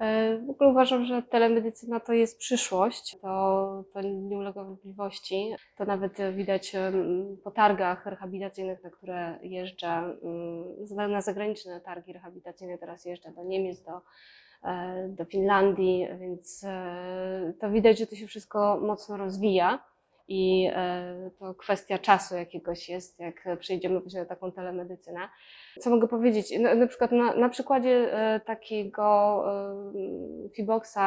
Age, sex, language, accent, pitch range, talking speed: 20-39, female, Polish, native, 185-210 Hz, 125 wpm